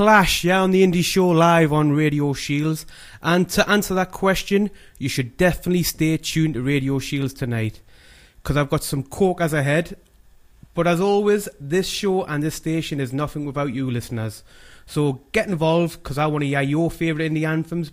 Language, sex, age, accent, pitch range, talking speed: English, male, 30-49, British, 130-165 Hz, 190 wpm